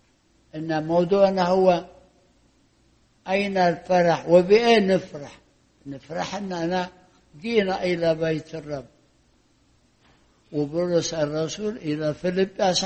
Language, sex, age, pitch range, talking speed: English, male, 60-79, 170-225 Hz, 80 wpm